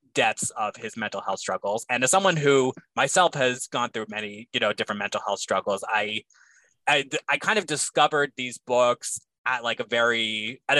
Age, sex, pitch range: 20-39, male, 110-145 Hz